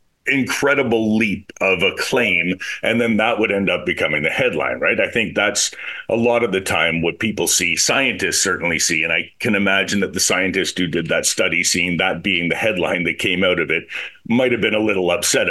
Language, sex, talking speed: English, male, 215 wpm